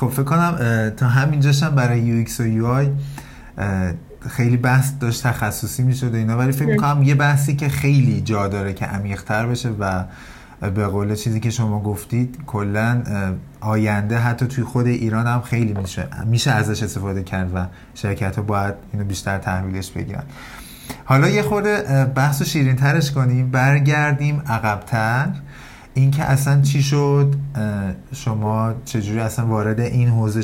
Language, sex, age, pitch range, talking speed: Persian, male, 30-49, 110-140 Hz, 150 wpm